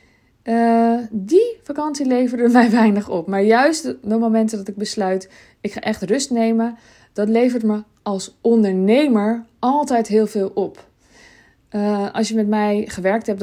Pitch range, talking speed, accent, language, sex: 190-225 Hz, 160 wpm, Dutch, Dutch, female